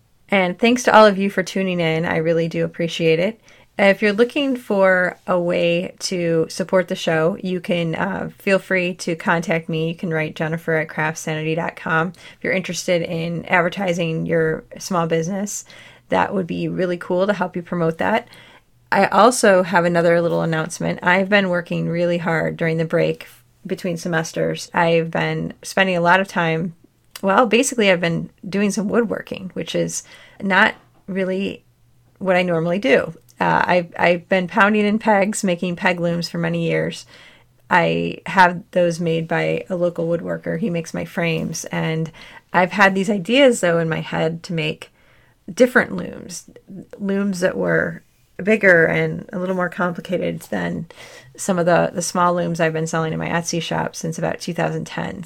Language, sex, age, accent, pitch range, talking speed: English, female, 30-49, American, 165-190 Hz, 170 wpm